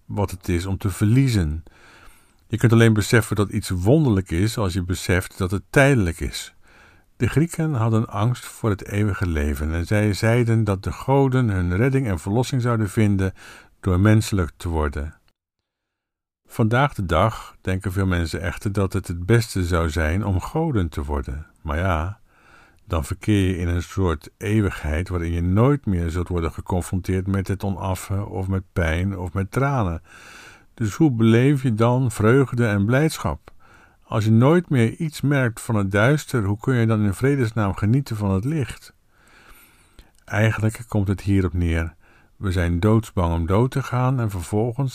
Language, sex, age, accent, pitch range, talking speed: Dutch, male, 50-69, Dutch, 90-115 Hz, 170 wpm